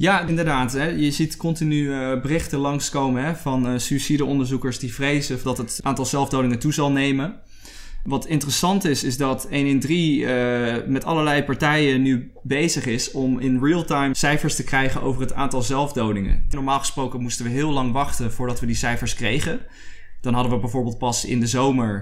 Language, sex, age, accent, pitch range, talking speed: Dutch, male, 20-39, Dutch, 125-145 Hz, 170 wpm